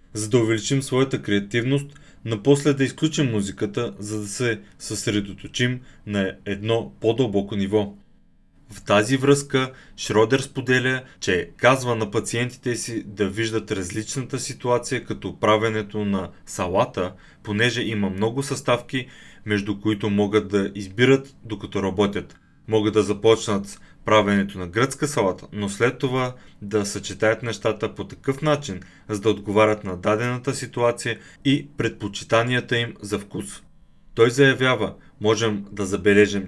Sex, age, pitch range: male, 30-49, 105-130 Hz